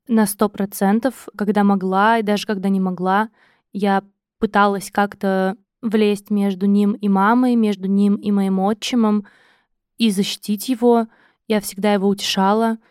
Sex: female